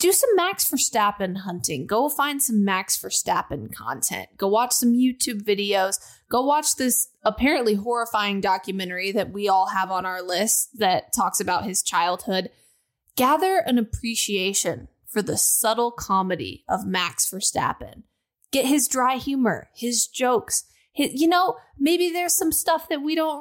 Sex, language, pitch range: female, English, 200-285 Hz